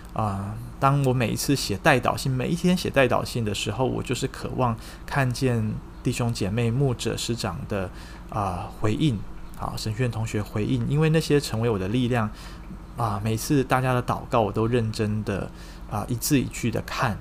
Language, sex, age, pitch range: Chinese, male, 20-39, 105-135 Hz